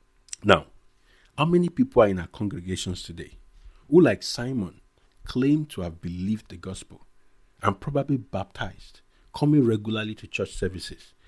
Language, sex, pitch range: English, male, 95-130 Hz